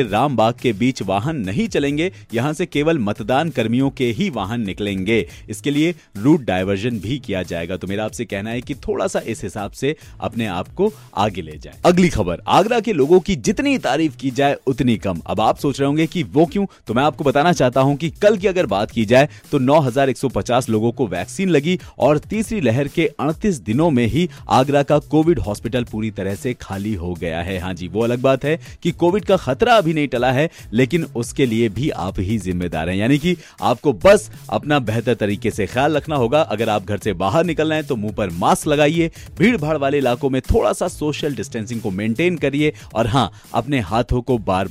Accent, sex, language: native, male, Hindi